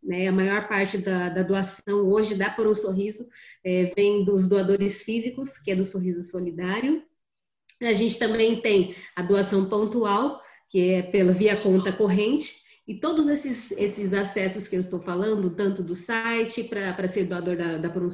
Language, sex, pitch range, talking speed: Portuguese, female, 180-220 Hz, 170 wpm